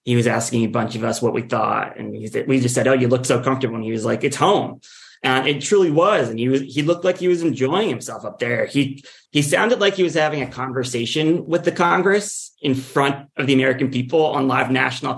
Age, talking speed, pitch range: 30-49, 245 wpm, 120-145 Hz